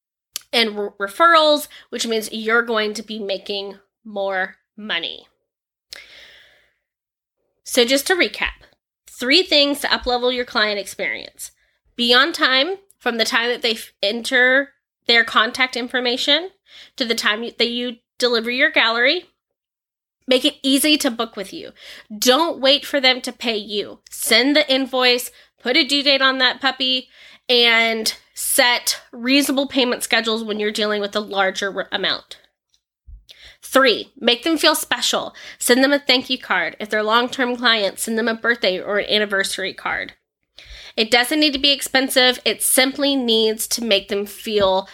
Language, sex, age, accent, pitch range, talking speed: English, female, 20-39, American, 220-270 Hz, 150 wpm